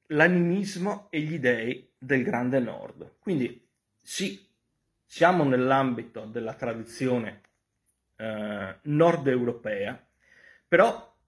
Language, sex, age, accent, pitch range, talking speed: Italian, male, 40-59, native, 110-155 Hz, 85 wpm